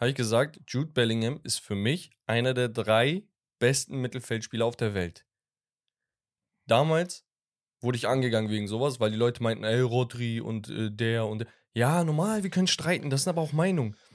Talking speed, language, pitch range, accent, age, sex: 180 wpm, German, 120-170 Hz, German, 10-29, male